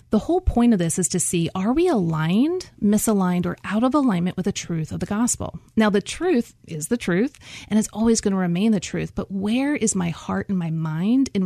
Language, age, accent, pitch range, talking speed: English, 30-49, American, 175-235 Hz, 235 wpm